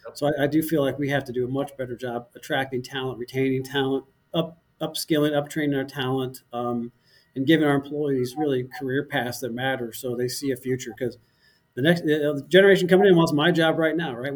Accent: American